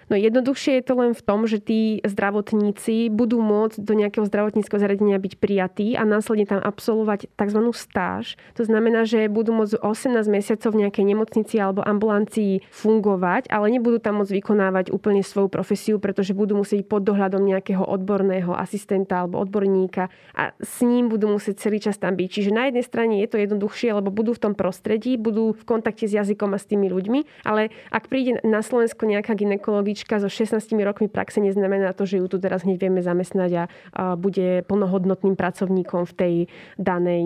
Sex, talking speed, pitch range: female, 180 wpm, 195-220 Hz